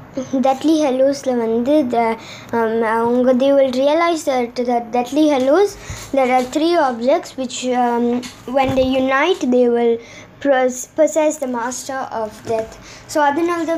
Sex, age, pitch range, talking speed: male, 20-39, 235-280 Hz, 145 wpm